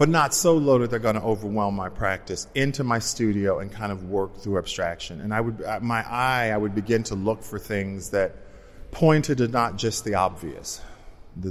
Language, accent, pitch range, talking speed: English, American, 95-120 Hz, 210 wpm